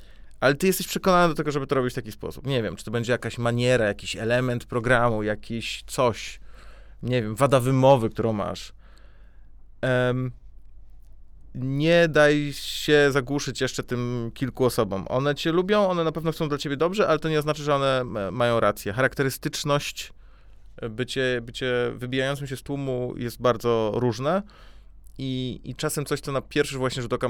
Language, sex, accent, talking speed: Polish, male, native, 170 wpm